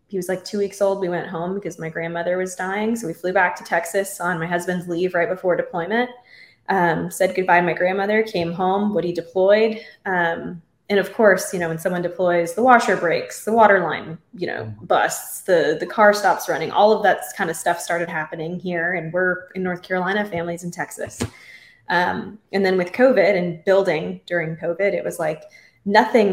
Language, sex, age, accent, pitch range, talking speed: English, female, 20-39, American, 170-200 Hz, 205 wpm